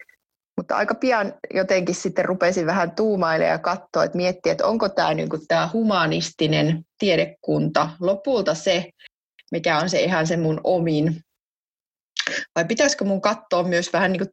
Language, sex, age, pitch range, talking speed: Finnish, female, 30-49, 160-195 Hz, 145 wpm